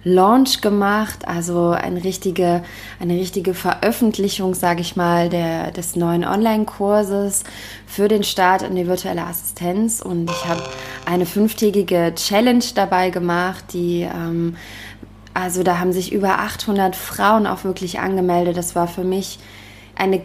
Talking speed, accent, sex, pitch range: 140 wpm, German, female, 175-200 Hz